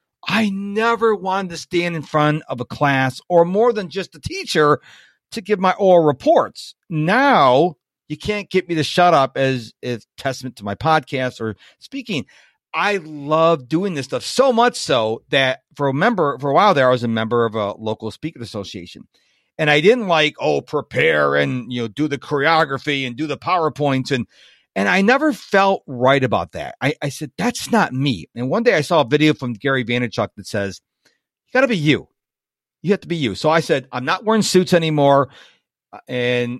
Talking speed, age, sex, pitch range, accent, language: 200 wpm, 50-69, male, 130-190 Hz, American, English